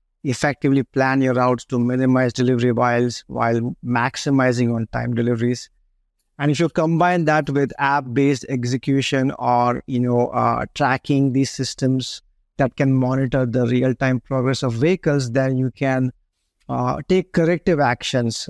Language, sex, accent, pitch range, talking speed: English, male, Indian, 125-145 Hz, 140 wpm